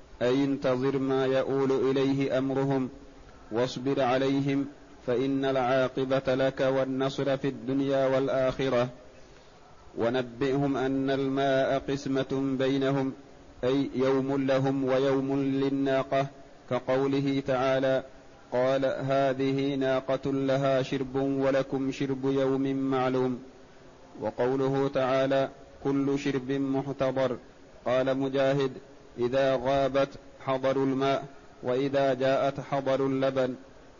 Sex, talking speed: male, 90 wpm